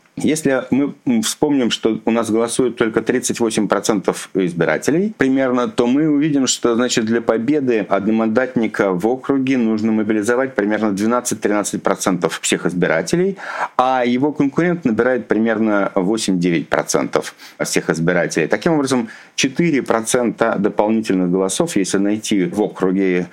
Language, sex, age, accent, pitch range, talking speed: Russian, male, 50-69, native, 95-125 Hz, 115 wpm